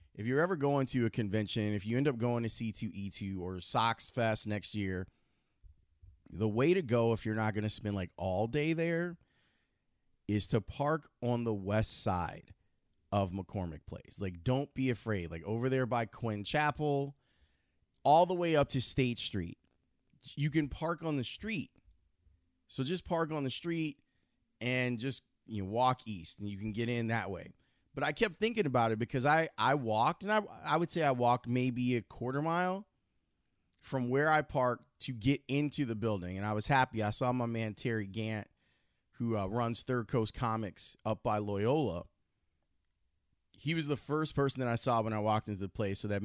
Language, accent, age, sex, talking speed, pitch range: English, American, 30-49, male, 195 wpm, 100-140 Hz